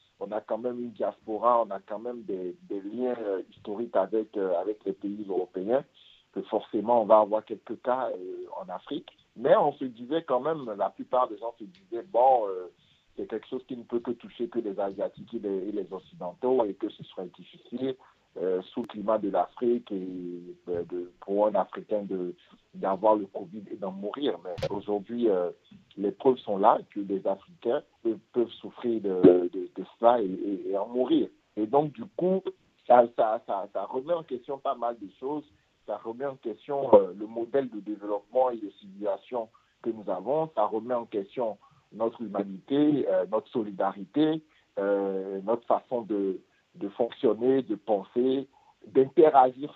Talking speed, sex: 185 wpm, male